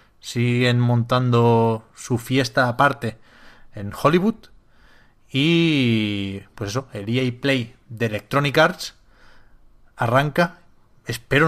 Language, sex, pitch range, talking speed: Spanish, male, 110-135 Hz, 95 wpm